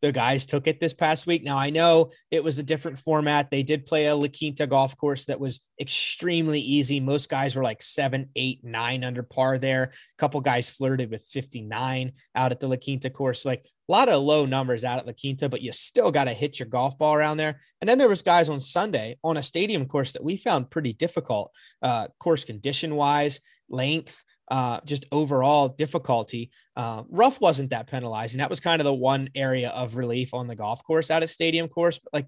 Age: 20-39